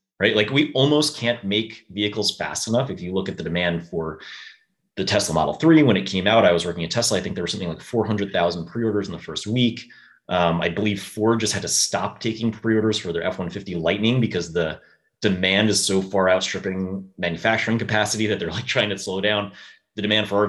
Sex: male